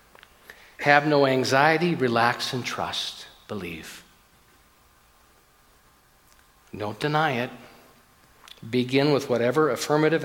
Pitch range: 125-165 Hz